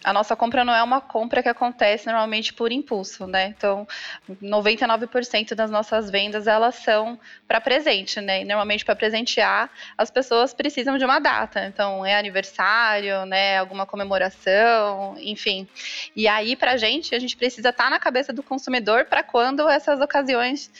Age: 20-39